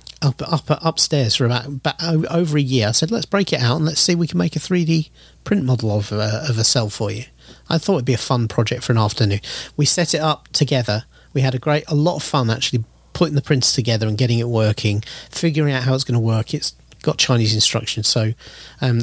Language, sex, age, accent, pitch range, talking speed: English, male, 40-59, British, 115-150 Hz, 245 wpm